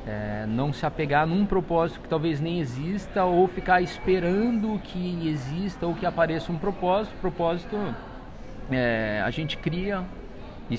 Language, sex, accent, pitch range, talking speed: Portuguese, male, Brazilian, 140-180 Hz, 145 wpm